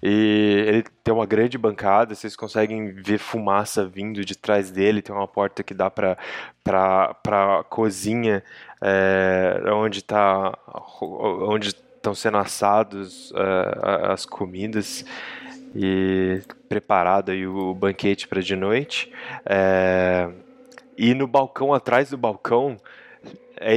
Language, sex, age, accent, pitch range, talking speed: Portuguese, male, 20-39, Brazilian, 95-120 Hz, 125 wpm